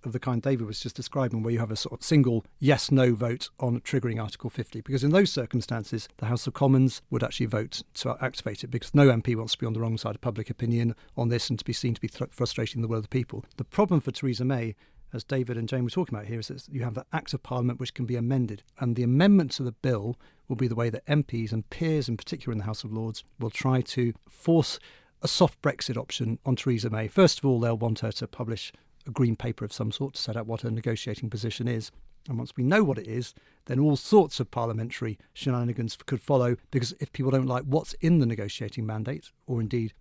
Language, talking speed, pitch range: English, 250 wpm, 115-135 Hz